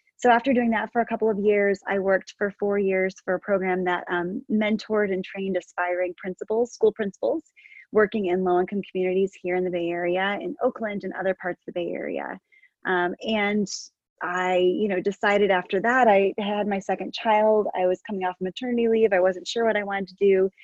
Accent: American